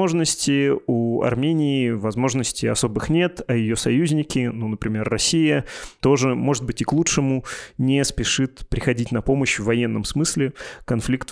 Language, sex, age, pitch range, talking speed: Russian, male, 20-39, 115-135 Hz, 140 wpm